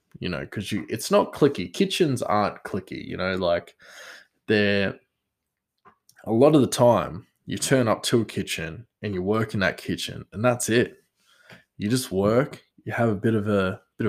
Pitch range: 95-120 Hz